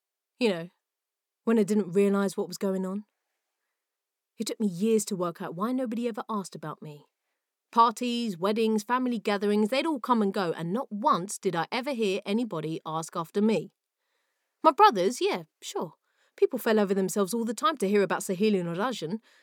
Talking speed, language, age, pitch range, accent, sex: 185 wpm, English, 30-49, 190-250 Hz, British, female